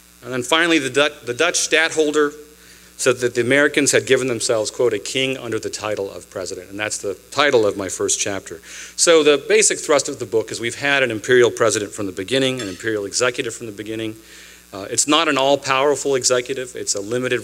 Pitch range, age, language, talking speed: 100-145 Hz, 40-59, English, 205 wpm